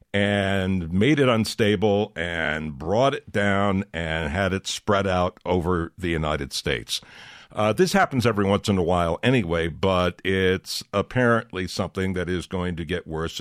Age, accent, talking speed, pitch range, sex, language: 60-79, American, 160 wpm, 85-105 Hz, male, English